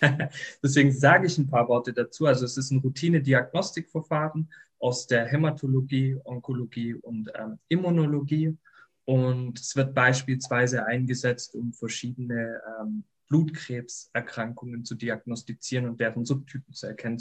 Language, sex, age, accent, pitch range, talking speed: German, male, 20-39, German, 120-140 Hz, 120 wpm